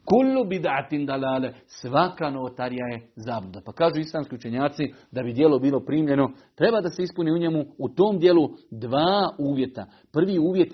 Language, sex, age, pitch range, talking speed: Croatian, male, 40-59, 130-155 Hz, 155 wpm